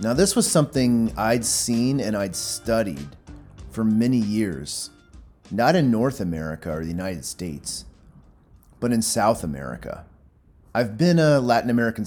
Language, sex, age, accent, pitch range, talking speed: English, male, 30-49, American, 90-115 Hz, 145 wpm